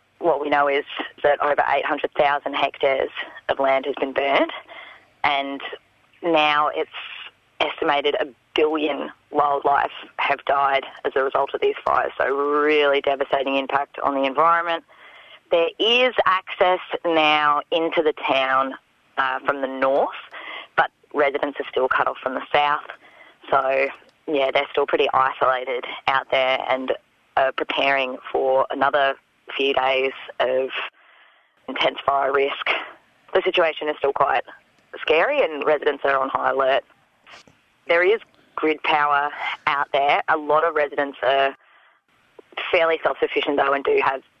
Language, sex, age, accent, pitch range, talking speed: English, female, 20-39, Australian, 140-165 Hz, 140 wpm